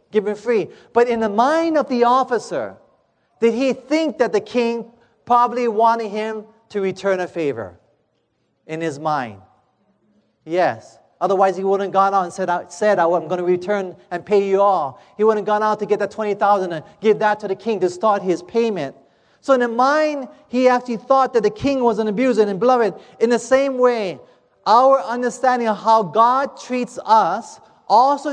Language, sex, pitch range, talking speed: English, male, 195-245 Hz, 190 wpm